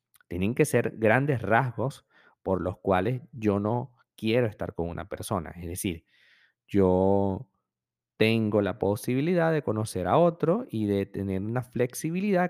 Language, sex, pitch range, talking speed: Spanish, male, 100-145 Hz, 145 wpm